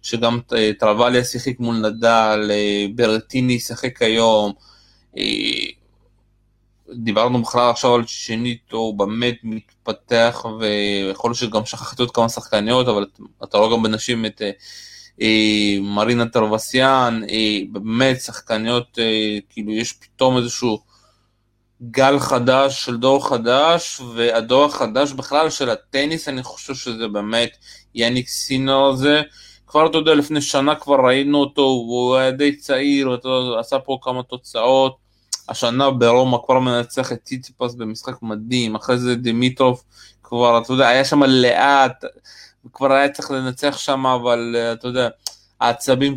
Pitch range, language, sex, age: 115-130 Hz, Hebrew, male, 20-39